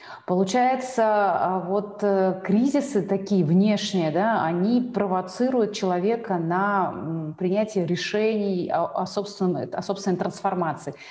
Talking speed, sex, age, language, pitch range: 90 wpm, female, 30-49, Russian, 170-205 Hz